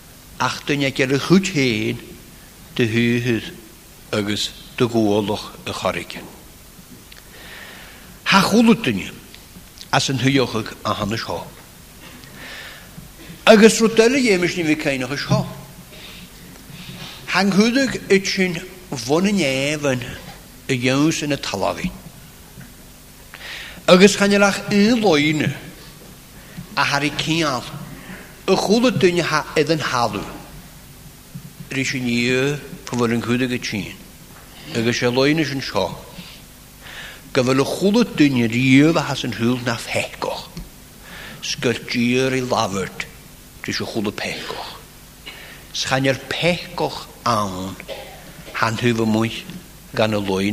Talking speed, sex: 60 wpm, male